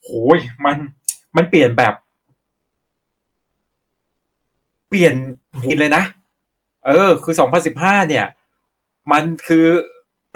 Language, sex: Thai, male